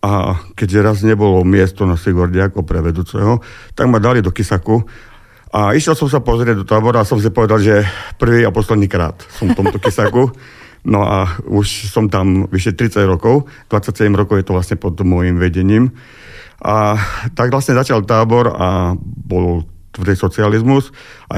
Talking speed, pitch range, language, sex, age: 170 wpm, 90-115 Hz, Slovak, male, 50-69